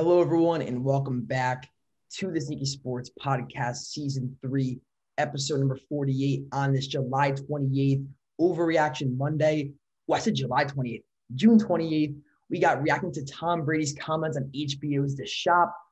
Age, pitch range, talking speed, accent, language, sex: 20-39, 140-175 Hz, 145 wpm, American, English, male